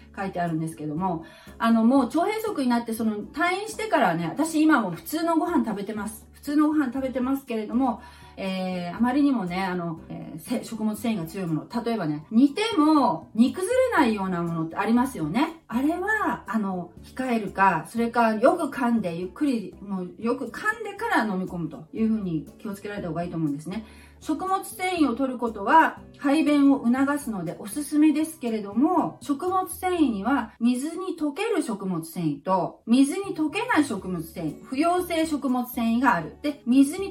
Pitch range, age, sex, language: 190-295 Hz, 40-59, female, Japanese